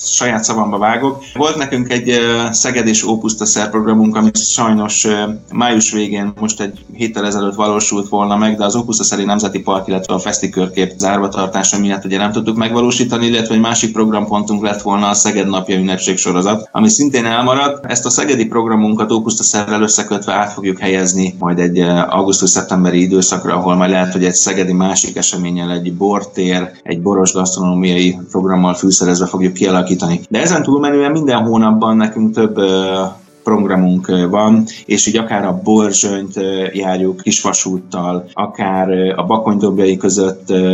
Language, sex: Hungarian, male